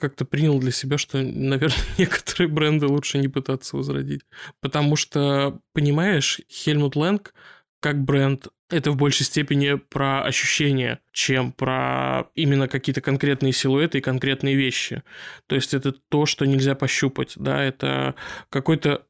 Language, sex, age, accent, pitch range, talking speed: Russian, male, 20-39, native, 135-150 Hz, 140 wpm